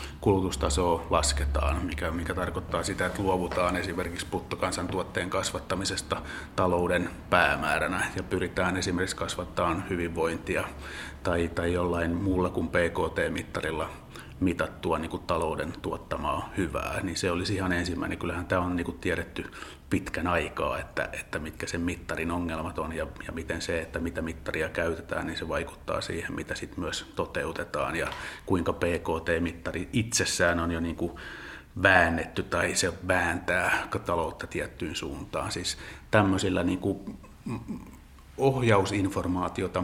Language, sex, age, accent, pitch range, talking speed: Finnish, male, 30-49, native, 85-95 Hz, 115 wpm